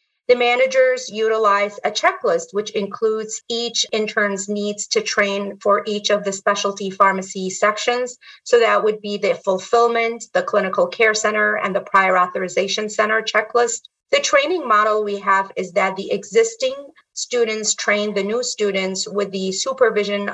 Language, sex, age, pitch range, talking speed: English, female, 30-49, 195-235 Hz, 155 wpm